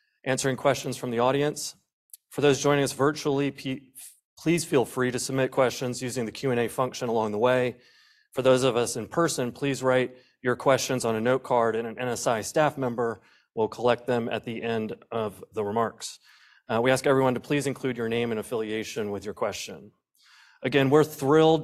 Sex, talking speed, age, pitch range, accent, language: male, 190 wpm, 30-49, 115-135 Hz, American, English